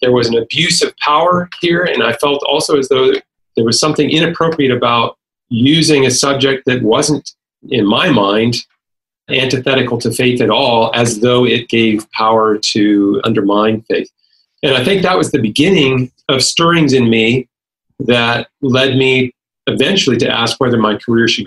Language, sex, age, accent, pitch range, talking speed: English, male, 40-59, American, 115-140 Hz, 170 wpm